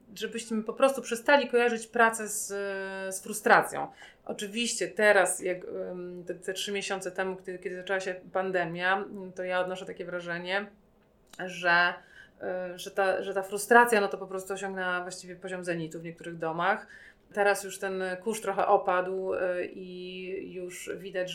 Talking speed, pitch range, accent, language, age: 150 wpm, 175-195 Hz, native, Polish, 30-49